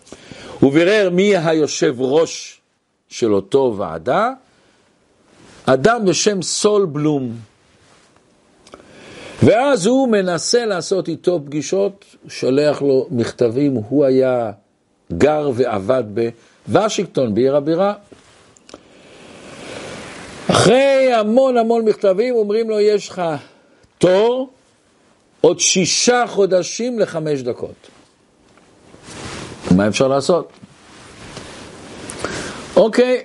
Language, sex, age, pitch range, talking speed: Hebrew, male, 50-69, 135-205 Hz, 85 wpm